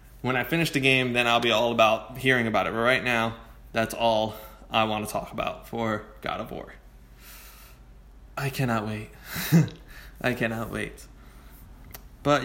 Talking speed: 165 wpm